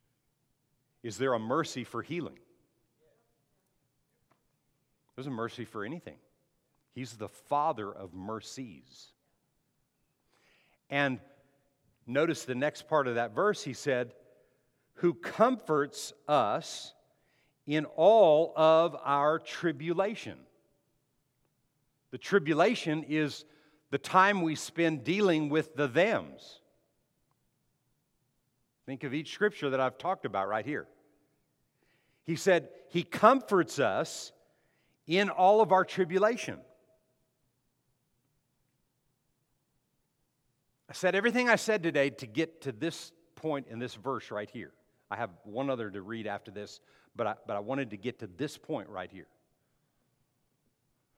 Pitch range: 130-160 Hz